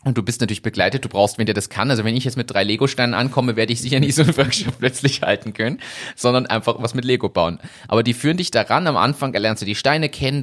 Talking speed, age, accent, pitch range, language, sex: 270 wpm, 30-49, German, 115-140 Hz, German, male